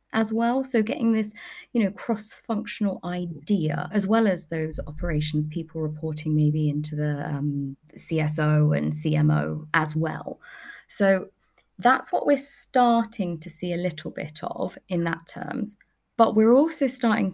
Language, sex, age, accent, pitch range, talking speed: English, female, 20-39, British, 160-210 Hz, 150 wpm